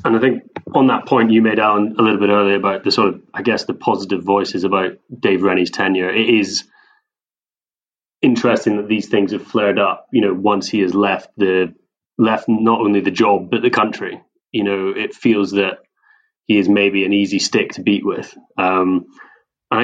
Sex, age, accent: male, 30-49, British